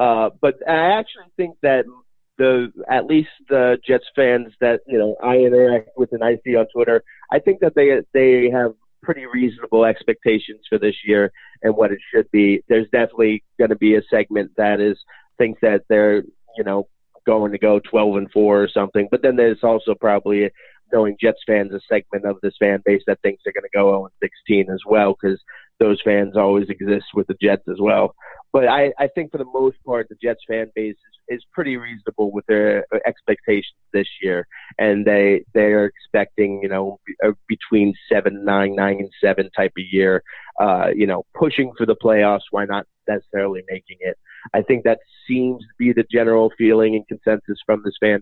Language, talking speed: English, 200 wpm